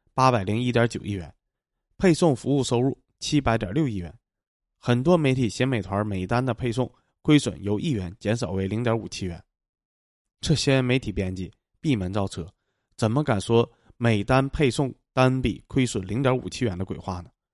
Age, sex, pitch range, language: 20-39, male, 100-130 Hz, Chinese